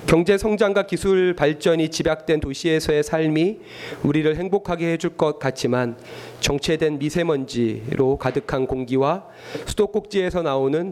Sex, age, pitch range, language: male, 40-59, 135-165 Hz, Korean